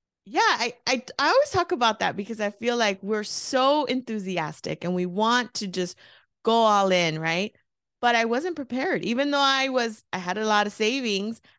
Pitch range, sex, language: 180-245 Hz, female, English